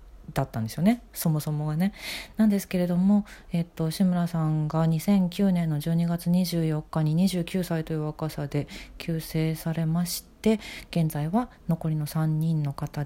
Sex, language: female, Japanese